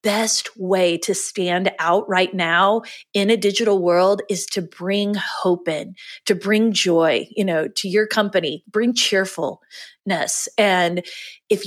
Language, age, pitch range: English, 30-49, 180-225 Hz